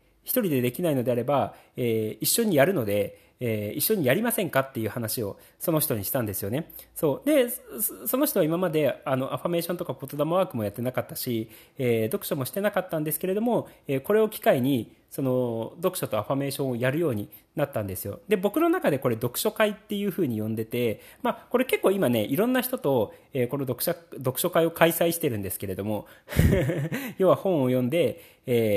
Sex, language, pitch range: male, Japanese, 120-190 Hz